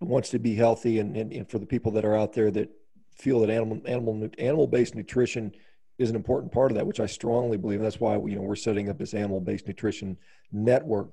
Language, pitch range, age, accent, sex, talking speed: English, 105-120 Hz, 40-59, American, male, 235 wpm